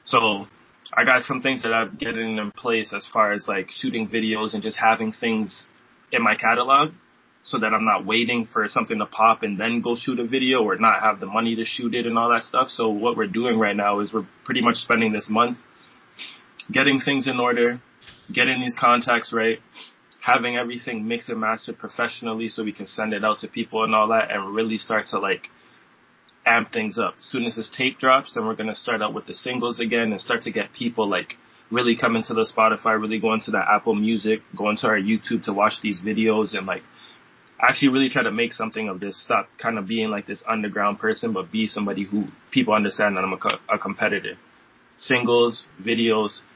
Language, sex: English, male